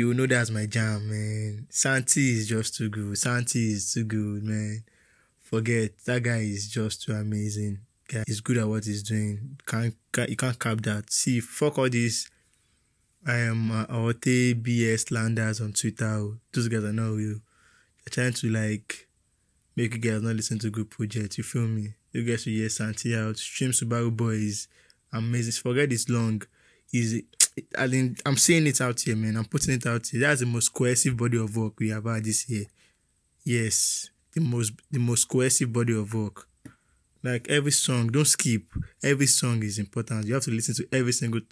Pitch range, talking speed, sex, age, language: 110-125 Hz, 195 wpm, male, 20-39, English